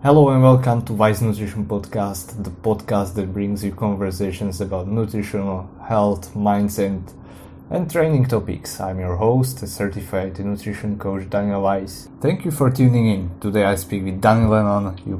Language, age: English, 20-39